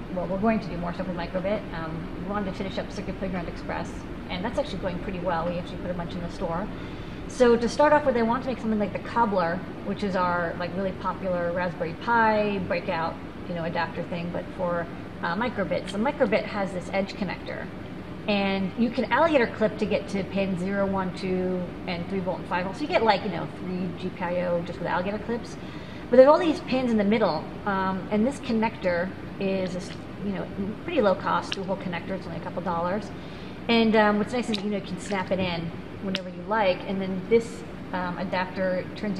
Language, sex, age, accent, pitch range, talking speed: English, female, 30-49, American, 180-215 Hz, 215 wpm